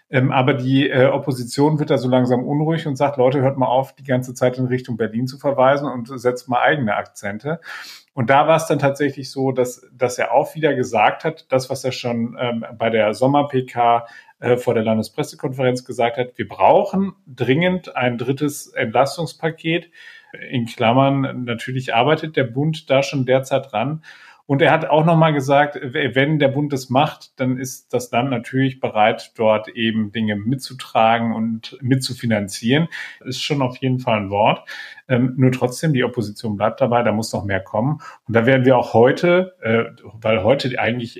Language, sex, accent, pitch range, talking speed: German, male, German, 115-135 Hz, 175 wpm